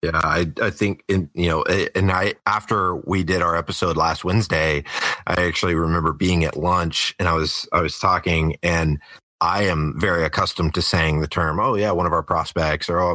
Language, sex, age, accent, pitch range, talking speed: English, male, 30-49, American, 80-95 Hz, 205 wpm